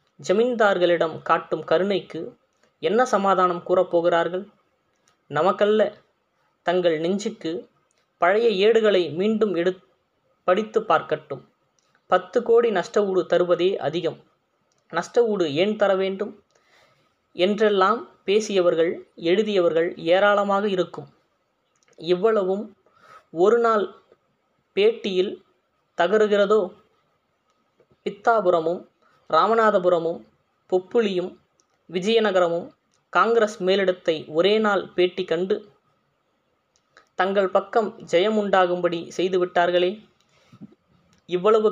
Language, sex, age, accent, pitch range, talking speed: Tamil, female, 20-39, native, 175-215 Hz, 70 wpm